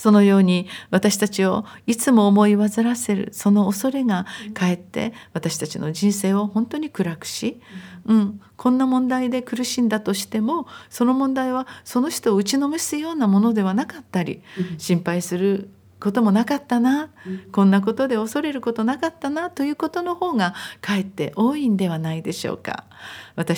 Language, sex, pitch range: Japanese, female, 190-235 Hz